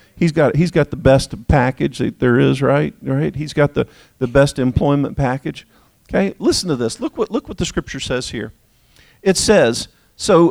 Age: 50-69